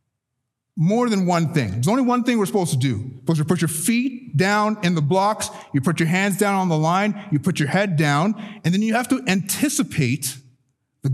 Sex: male